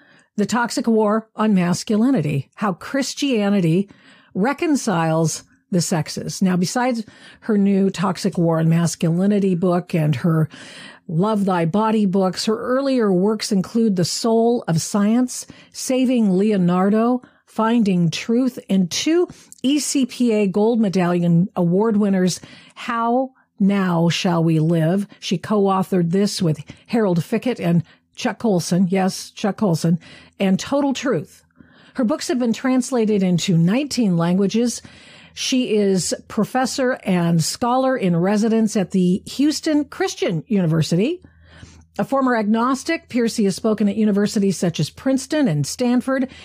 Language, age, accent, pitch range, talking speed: English, 50-69, American, 180-245 Hz, 125 wpm